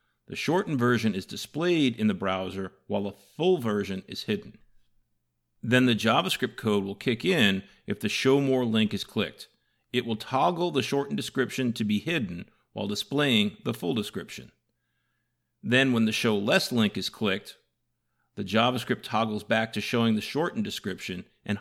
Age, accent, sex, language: 40-59, American, male, English